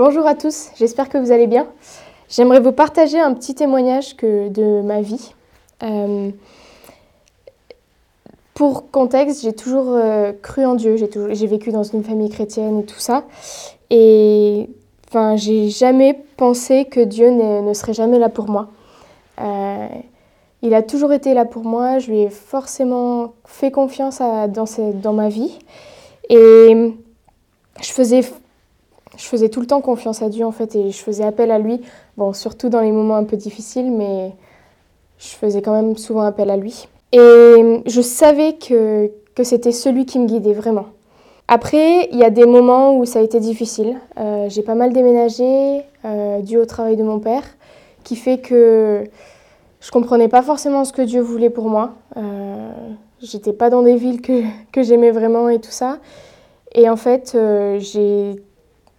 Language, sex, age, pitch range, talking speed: French, female, 20-39, 215-255 Hz, 175 wpm